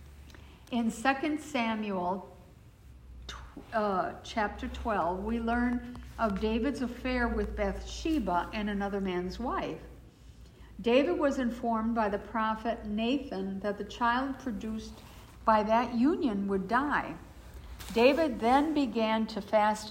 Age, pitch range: 60-79, 200-250 Hz